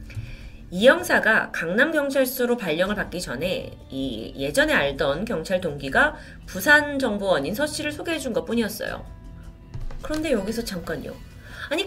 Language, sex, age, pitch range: Korean, female, 30-49, 190-300 Hz